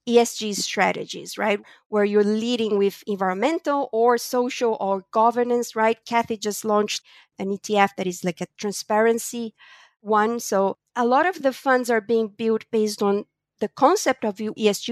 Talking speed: 155 wpm